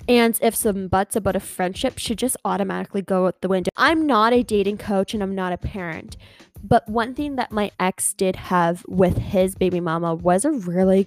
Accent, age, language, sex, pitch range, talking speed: American, 10-29, English, female, 195-245 Hz, 210 wpm